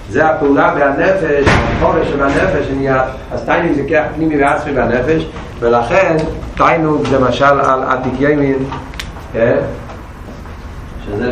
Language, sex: Hebrew, male